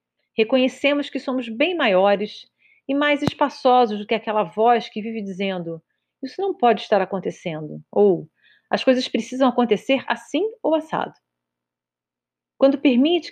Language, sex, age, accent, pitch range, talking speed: Portuguese, female, 40-59, Brazilian, 180-265 Hz, 135 wpm